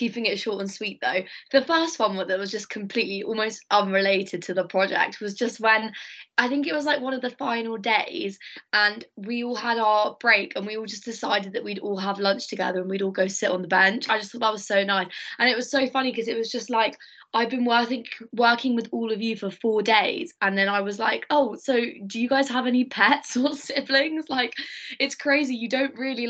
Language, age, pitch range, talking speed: English, 20-39, 195-235 Hz, 240 wpm